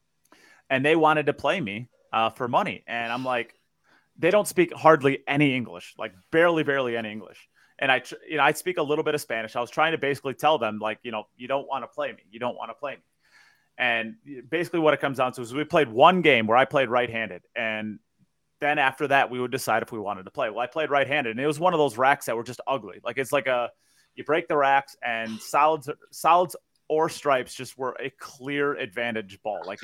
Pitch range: 115-150 Hz